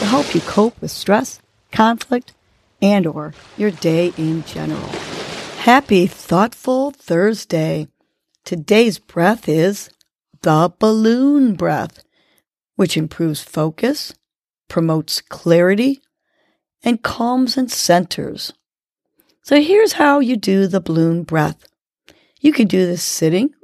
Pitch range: 175-260 Hz